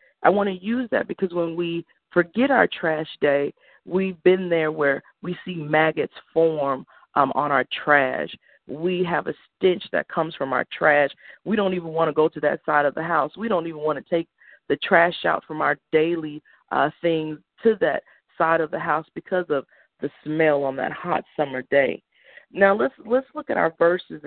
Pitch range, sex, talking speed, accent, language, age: 155-200 Hz, female, 200 wpm, American, English, 40-59